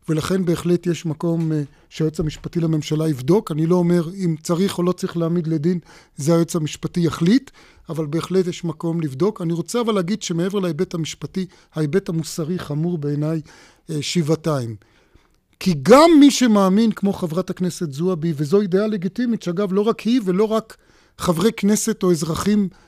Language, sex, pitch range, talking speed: Hebrew, male, 155-190 Hz, 155 wpm